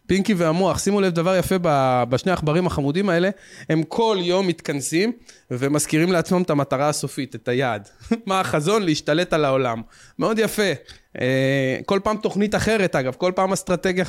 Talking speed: 155 wpm